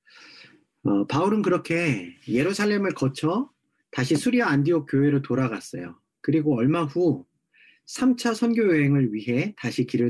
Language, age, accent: Korean, 40-59, native